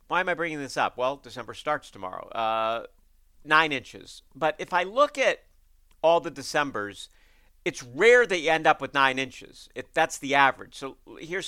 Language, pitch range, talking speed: English, 105-145 Hz, 185 wpm